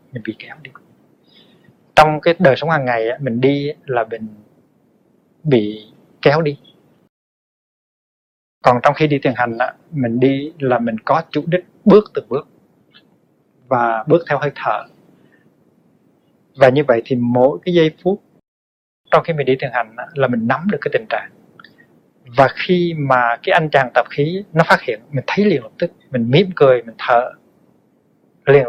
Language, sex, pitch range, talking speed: Vietnamese, male, 120-160 Hz, 170 wpm